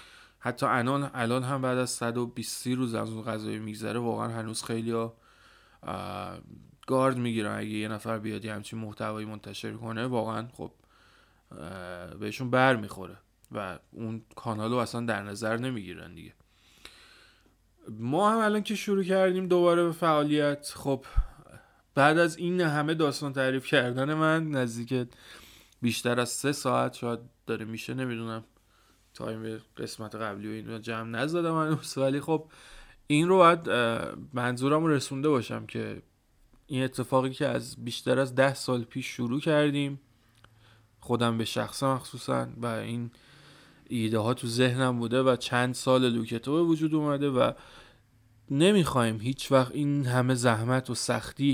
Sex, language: male, Persian